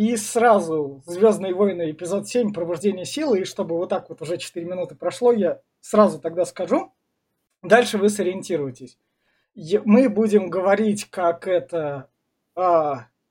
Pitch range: 175-220 Hz